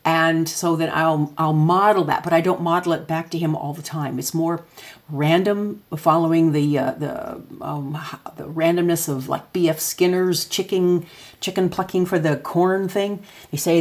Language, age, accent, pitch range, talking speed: English, 50-69, American, 145-175 Hz, 180 wpm